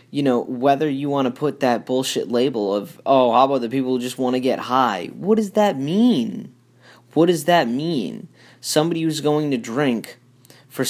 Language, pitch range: English, 115-140 Hz